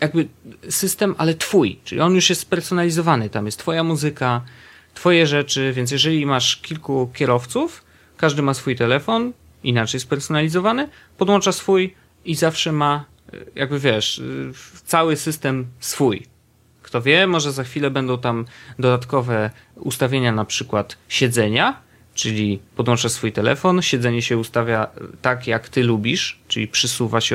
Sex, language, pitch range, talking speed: male, Polish, 110-145 Hz, 135 wpm